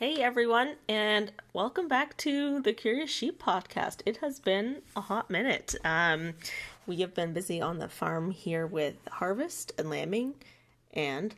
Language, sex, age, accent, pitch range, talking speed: English, female, 30-49, American, 180-240 Hz, 160 wpm